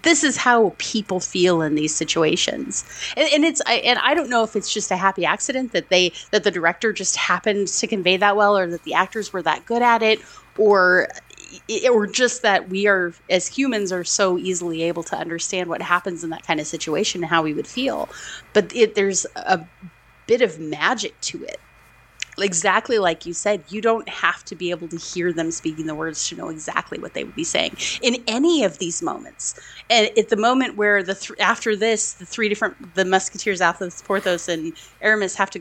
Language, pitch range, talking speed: English, 180-230 Hz, 210 wpm